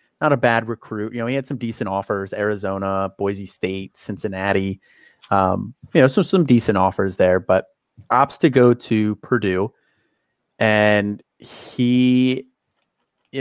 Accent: American